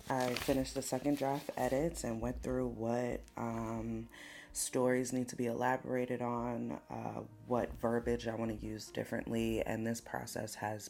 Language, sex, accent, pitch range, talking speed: English, female, American, 110-125 Hz, 160 wpm